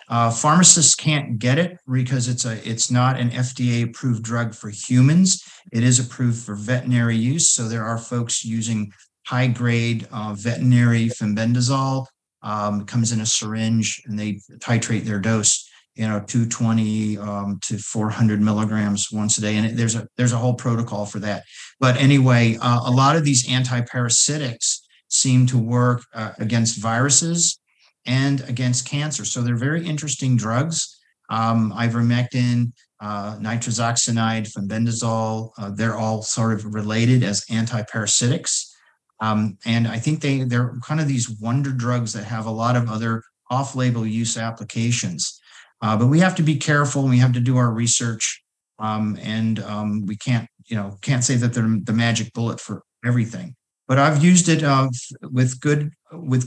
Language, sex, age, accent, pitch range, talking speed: English, male, 40-59, American, 110-130 Hz, 165 wpm